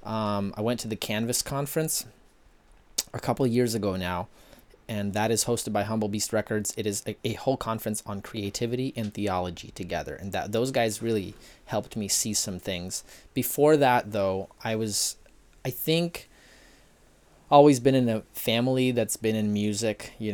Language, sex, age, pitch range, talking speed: English, male, 20-39, 95-115 Hz, 170 wpm